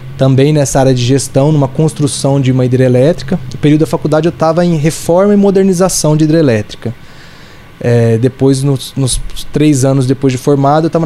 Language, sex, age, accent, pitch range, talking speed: Portuguese, male, 20-39, Brazilian, 130-155 Hz, 175 wpm